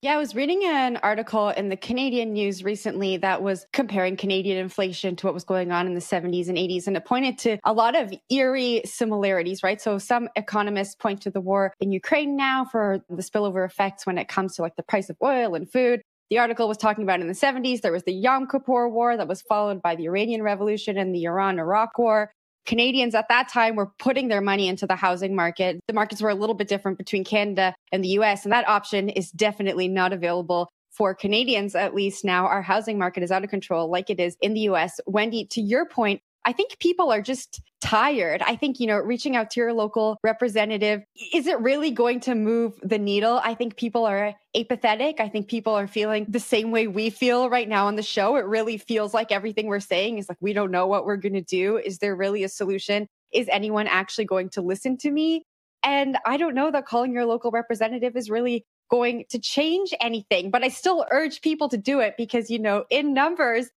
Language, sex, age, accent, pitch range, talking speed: English, female, 20-39, American, 195-240 Hz, 225 wpm